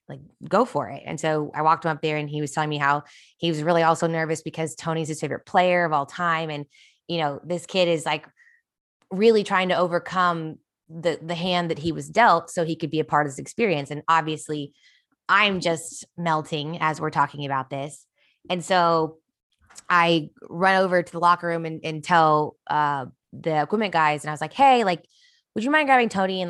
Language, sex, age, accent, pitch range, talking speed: English, female, 20-39, American, 150-175 Hz, 215 wpm